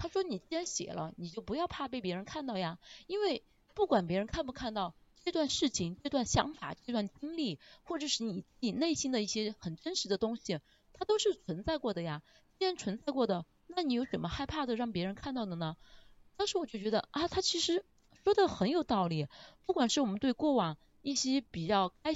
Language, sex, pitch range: Chinese, female, 190-310 Hz